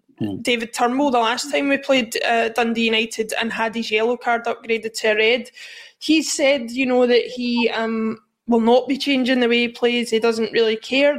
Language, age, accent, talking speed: English, 20-39, British, 200 wpm